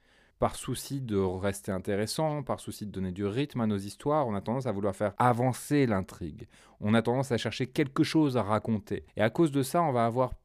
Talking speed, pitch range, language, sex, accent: 225 wpm, 100-125 Hz, French, male, French